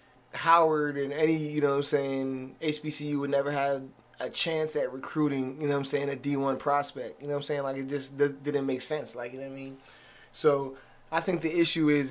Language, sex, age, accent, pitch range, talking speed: English, male, 20-39, American, 135-150 Hz, 235 wpm